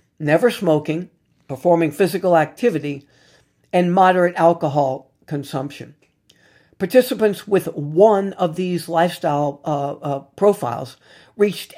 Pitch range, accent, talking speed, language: 145-185 Hz, American, 95 wpm, English